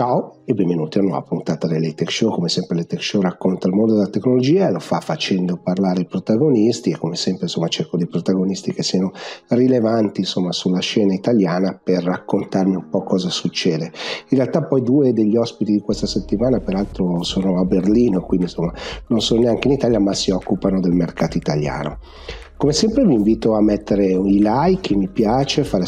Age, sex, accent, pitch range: 40-59, male, native, 95-120 Hz